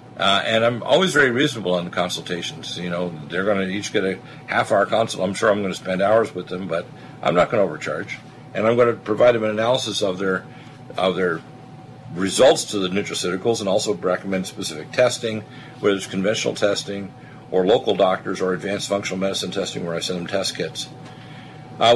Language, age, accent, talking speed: English, 50-69, American, 200 wpm